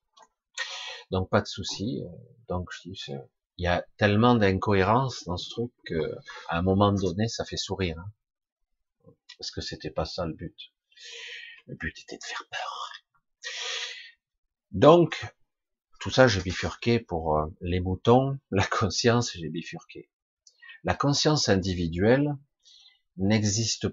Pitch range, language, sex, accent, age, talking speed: 90-120 Hz, French, male, French, 50-69, 130 wpm